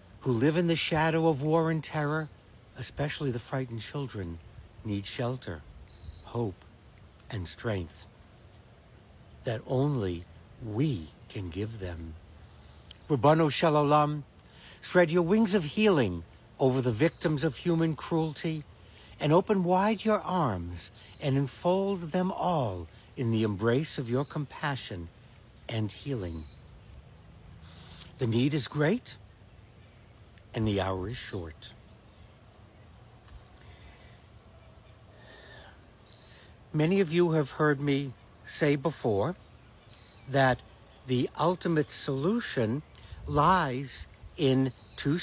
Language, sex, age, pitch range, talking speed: English, male, 60-79, 105-150 Hz, 105 wpm